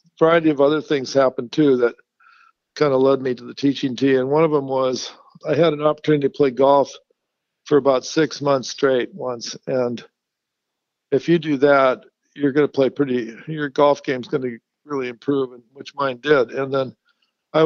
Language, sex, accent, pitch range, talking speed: English, male, American, 135-155 Hz, 195 wpm